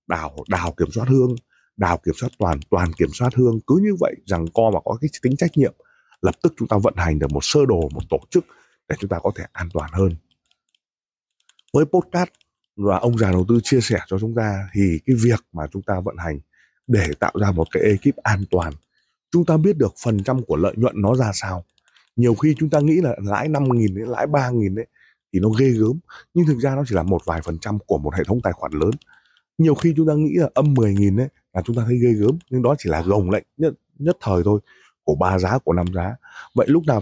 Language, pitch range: Vietnamese, 100-140 Hz